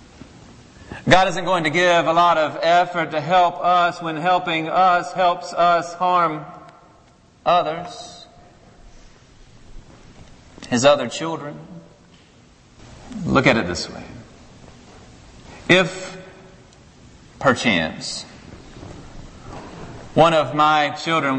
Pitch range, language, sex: 130-175 Hz, English, male